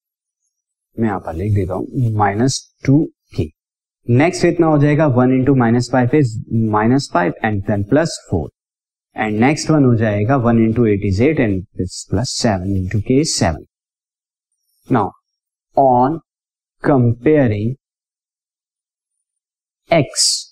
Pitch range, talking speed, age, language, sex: 110-140 Hz, 115 wpm, 30-49, Hindi, male